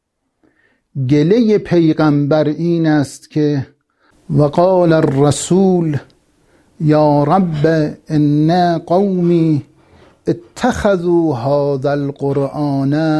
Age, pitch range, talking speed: 60-79, 130-160 Hz, 65 wpm